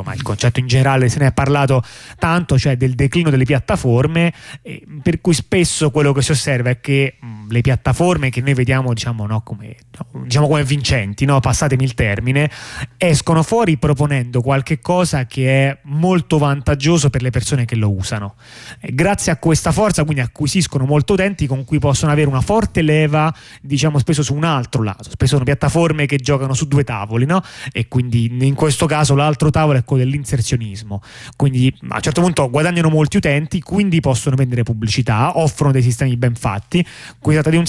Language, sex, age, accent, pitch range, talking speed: Italian, male, 30-49, native, 125-155 Hz, 180 wpm